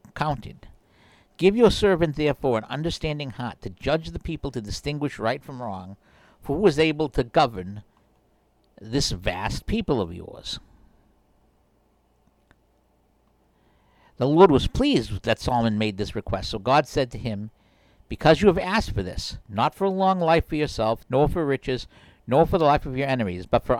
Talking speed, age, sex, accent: 165 wpm, 60-79, male, American